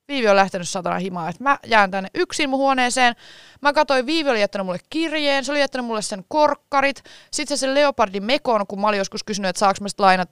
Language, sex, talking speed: Finnish, female, 220 wpm